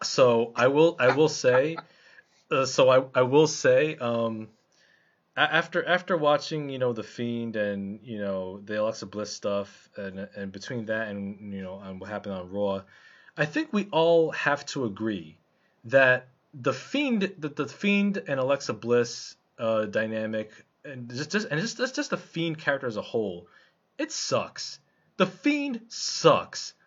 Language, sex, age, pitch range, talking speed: English, male, 20-39, 110-175 Hz, 170 wpm